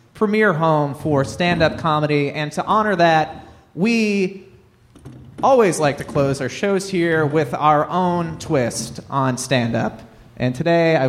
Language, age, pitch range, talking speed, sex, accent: English, 30-49, 155-225 Hz, 140 wpm, male, American